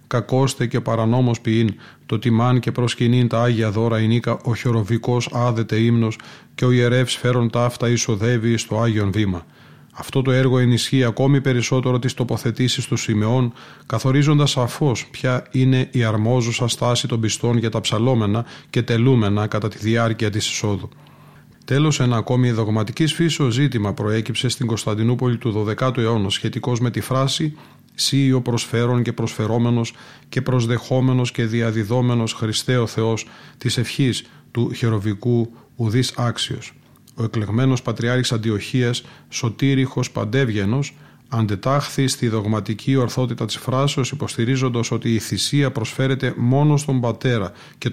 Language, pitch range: Greek, 115-130 Hz